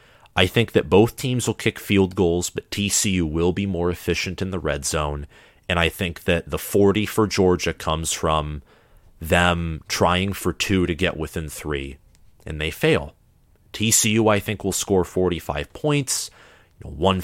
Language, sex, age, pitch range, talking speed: English, male, 30-49, 80-105 Hz, 165 wpm